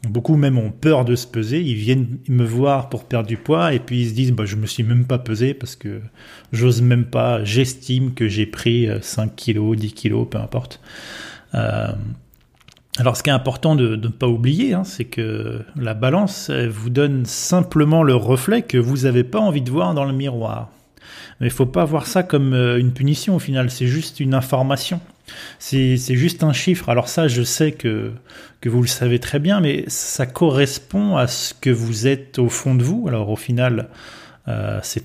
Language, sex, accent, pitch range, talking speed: French, male, French, 120-140 Hz, 210 wpm